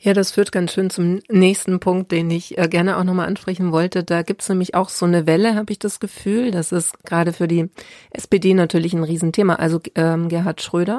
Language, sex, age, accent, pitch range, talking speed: German, female, 30-49, German, 170-185 Hz, 220 wpm